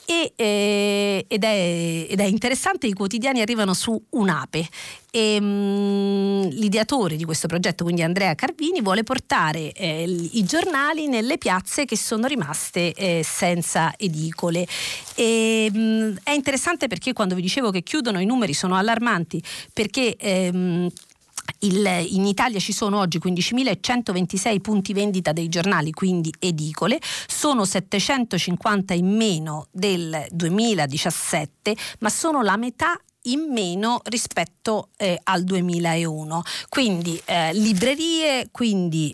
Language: Italian